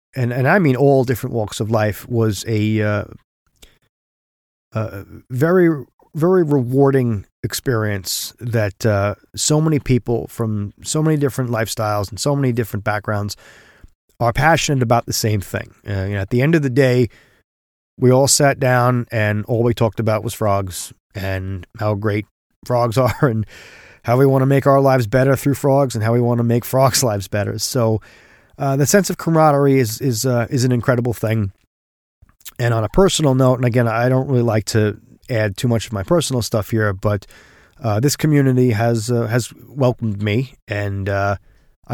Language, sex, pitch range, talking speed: English, male, 105-130 Hz, 180 wpm